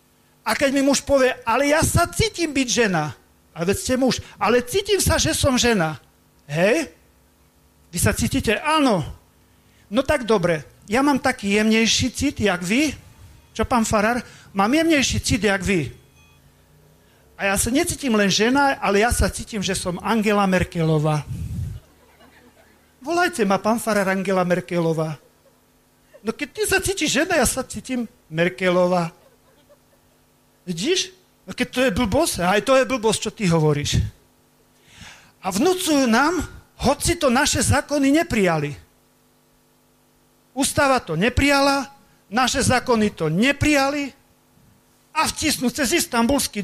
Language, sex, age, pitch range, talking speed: Slovak, male, 40-59, 155-265 Hz, 135 wpm